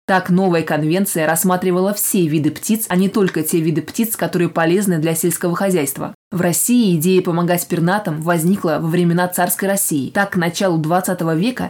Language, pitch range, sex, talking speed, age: Russian, 170-195 Hz, female, 170 wpm, 20-39